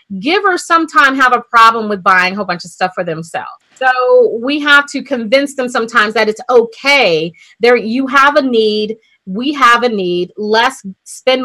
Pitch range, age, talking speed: 215-265 Hz, 30-49, 185 wpm